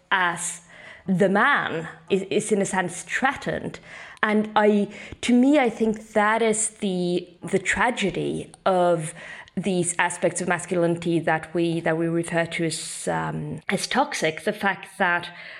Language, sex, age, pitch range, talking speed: English, female, 20-39, 175-205 Hz, 145 wpm